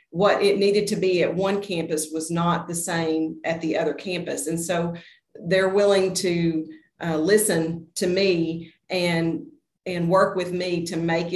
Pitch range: 165-200 Hz